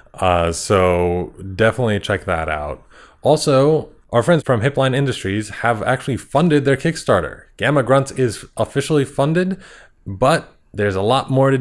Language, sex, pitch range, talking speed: English, male, 100-135 Hz, 145 wpm